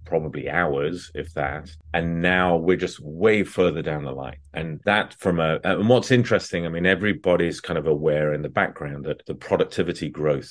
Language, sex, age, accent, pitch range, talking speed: English, male, 30-49, British, 75-90 Hz, 190 wpm